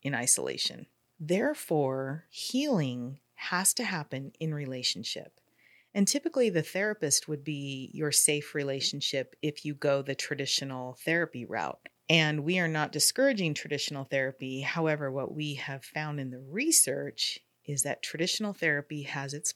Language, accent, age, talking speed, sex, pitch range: English, American, 30-49, 140 wpm, female, 135-175 Hz